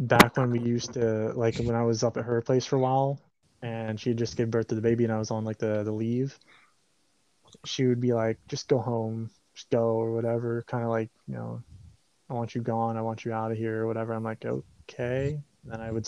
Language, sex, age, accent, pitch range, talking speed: English, male, 20-39, American, 115-135 Hz, 250 wpm